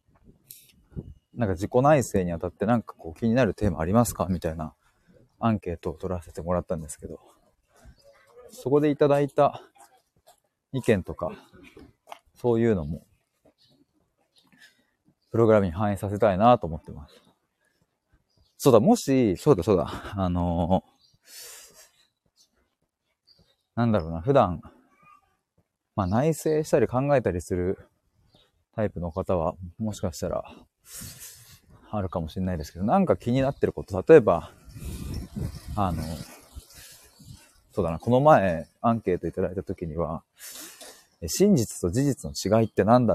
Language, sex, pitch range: Japanese, male, 90-120 Hz